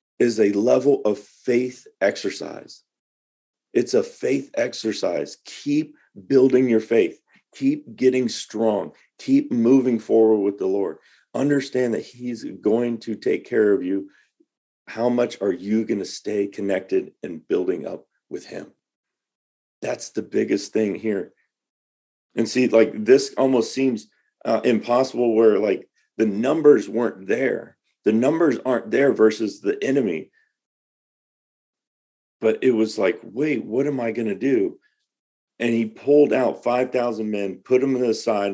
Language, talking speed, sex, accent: English, 145 wpm, male, American